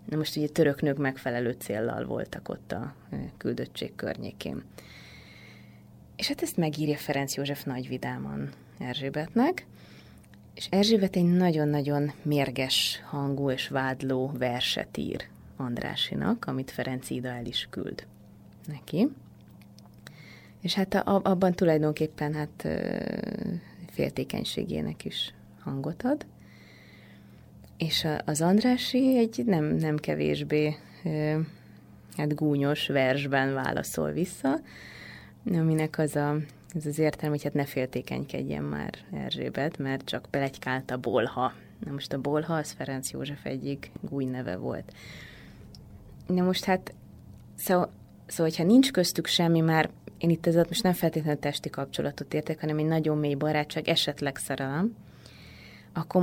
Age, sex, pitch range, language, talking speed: 30-49, female, 135-170 Hz, Hungarian, 120 wpm